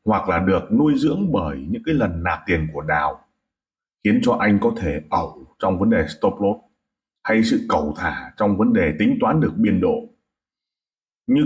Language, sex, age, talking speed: Vietnamese, male, 30-49, 190 wpm